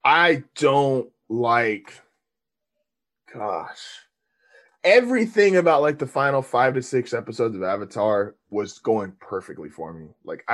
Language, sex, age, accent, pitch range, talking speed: English, male, 20-39, American, 115-145 Hz, 120 wpm